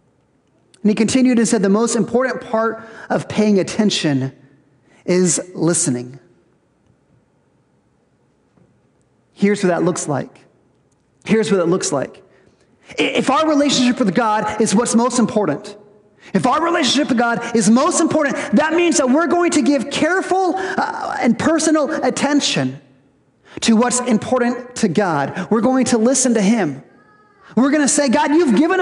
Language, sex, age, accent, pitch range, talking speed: English, male, 30-49, American, 210-280 Hz, 145 wpm